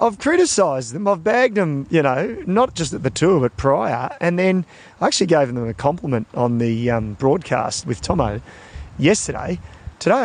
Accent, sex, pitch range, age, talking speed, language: Australian, male, 125-170 Hz, 40-59, 180 wpm, English